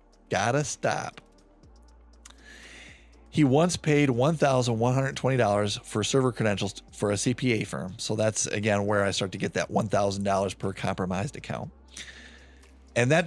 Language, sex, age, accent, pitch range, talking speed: English, male, 40-59, American, 100-135 Hz, 125 wpm